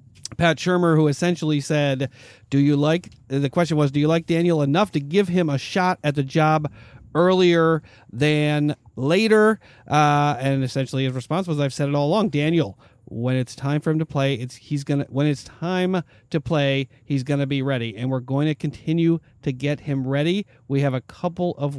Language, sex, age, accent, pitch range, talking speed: English, male, 40-59, American, 130-150 Hz, 205 wpm